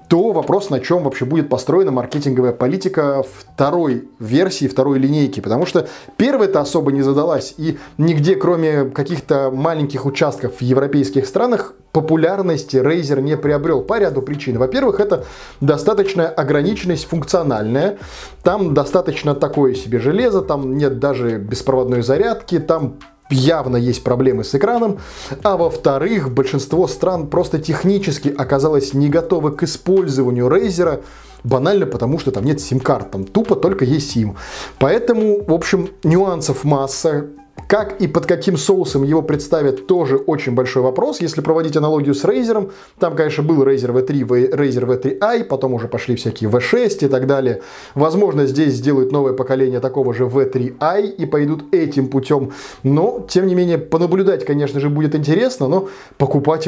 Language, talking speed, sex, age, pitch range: Russian, 145 wpm, male, 20-39, 130-165 Hz